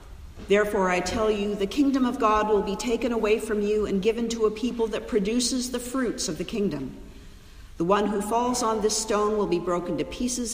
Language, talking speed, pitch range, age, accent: English, 215 wpm, 160-215 Hz, 50-69, American